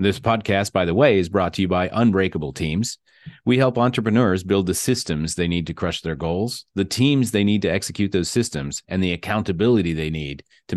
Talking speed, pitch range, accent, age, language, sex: 210 wpm, 85-115 Hz, American, 30-49, English, male